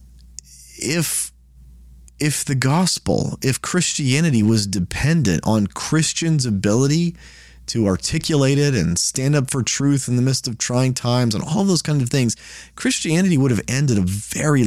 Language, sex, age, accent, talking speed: English, male, 30-49, American, 150 wpm